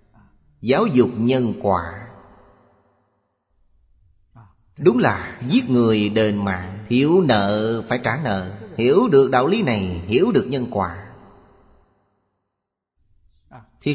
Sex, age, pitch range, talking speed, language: male, 30-49, 105-130 Hz, 110 wpm, Vietnamese